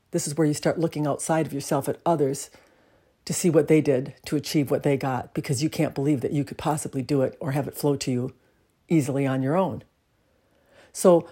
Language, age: English, 60-79